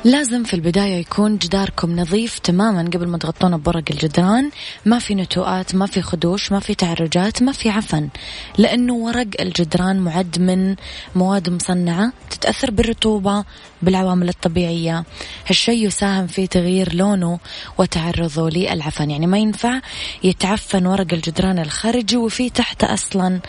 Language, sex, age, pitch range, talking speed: Arabic, female, 20-39, 170-205 Hz, 135 wpm